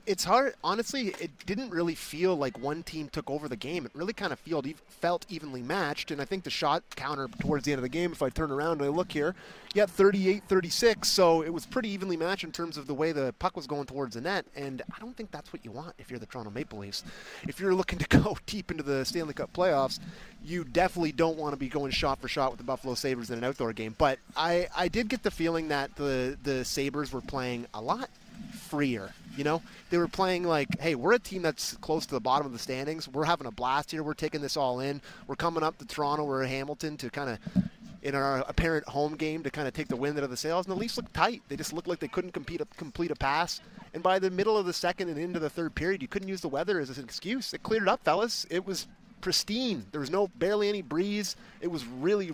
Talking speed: 260 wpm